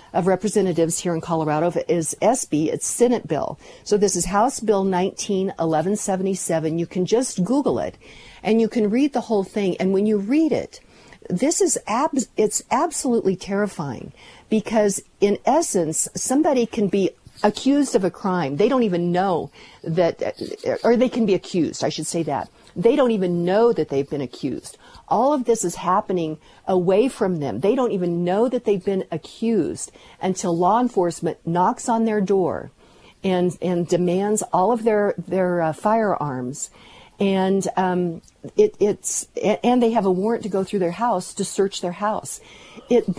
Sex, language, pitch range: female, English, 175-220 Hz